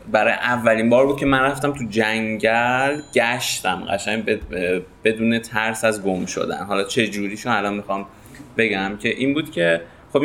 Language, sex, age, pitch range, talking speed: Persian, male, 20-39, 105-135 Hz, 170 wpm